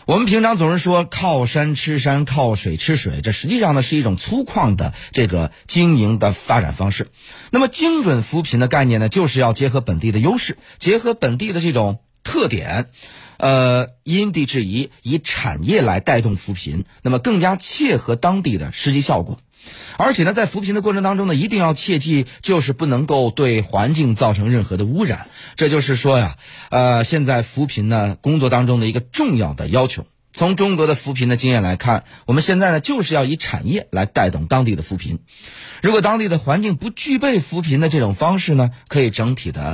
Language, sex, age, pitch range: Chinese, male, 30-49, 115-165 Hz